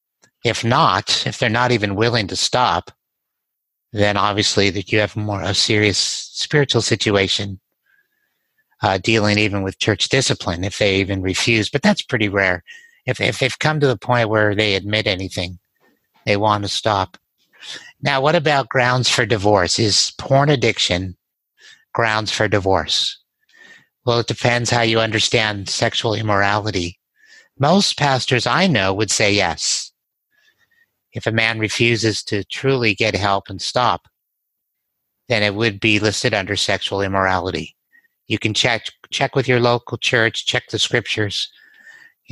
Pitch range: 100-130 Hz